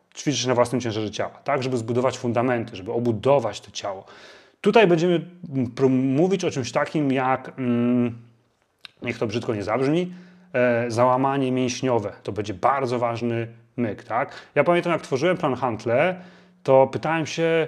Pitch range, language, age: 125-175 Hz, Polish, 30-49